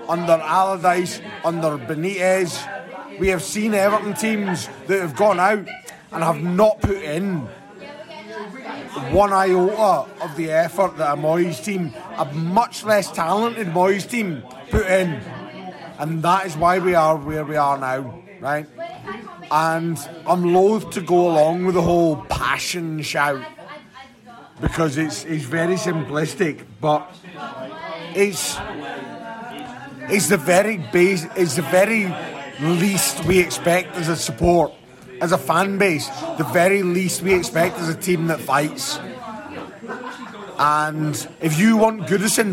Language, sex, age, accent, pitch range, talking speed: English, male, 30-49, British, 160-195 Hz, 135 wpm